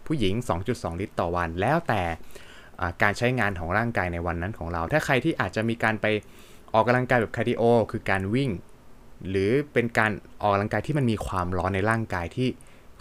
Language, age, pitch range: Thai, 20-39, 95-125 Hz